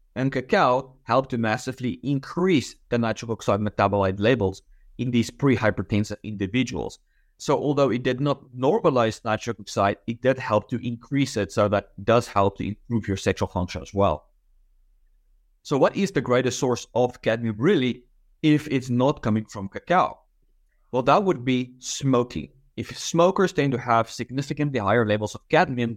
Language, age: English, 30-49